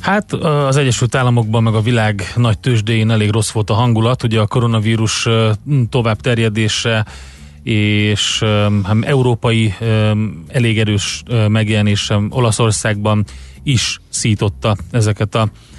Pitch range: 105-120 Hz